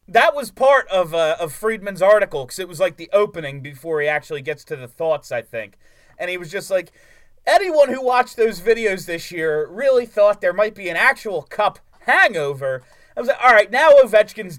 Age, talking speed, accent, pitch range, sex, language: 30-49, 205 wpm, American, 160-245 Hz, male, English